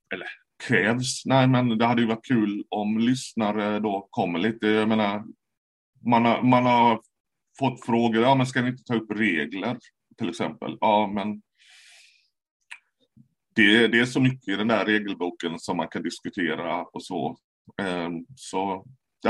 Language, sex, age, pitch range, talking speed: English, male, 30-49, 105-125 Hz, 155 wpm